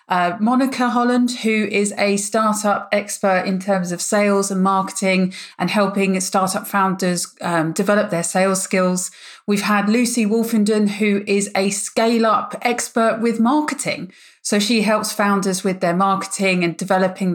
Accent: British